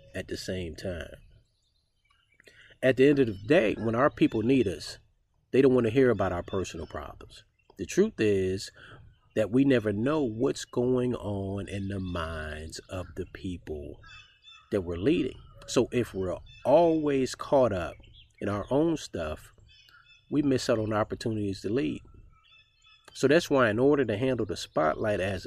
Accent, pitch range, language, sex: American, 95-125 Hz, English, male